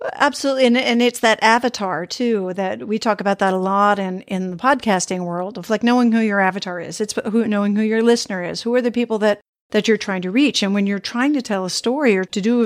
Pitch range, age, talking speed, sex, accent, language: 195-235 Hz, 50-69, 260 wpm, female, American, English